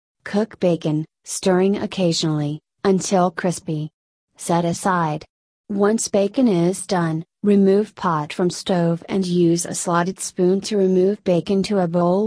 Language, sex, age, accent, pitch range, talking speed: English, female, 30-49, American, 175-205 Hz, 130 wpm